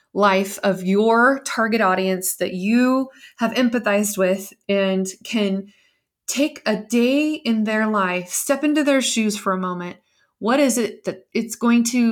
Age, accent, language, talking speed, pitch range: 20-39, American, English, 160 wpm, 190-245 Hz